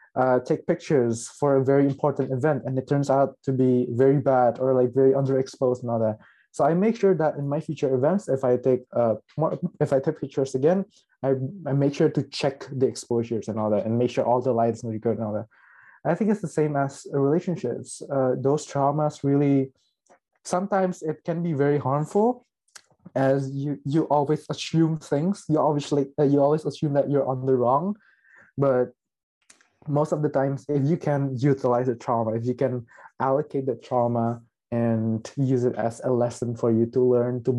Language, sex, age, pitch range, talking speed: Indonesian, male, 20-39, 120-150 Hz, 200 wpm